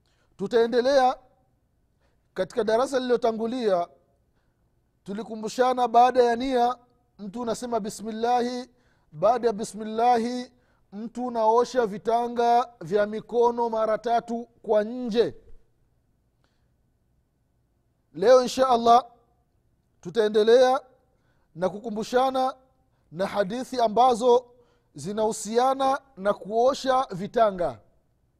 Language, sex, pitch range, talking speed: Swahili, male, 205-245 Hz, 75 wpm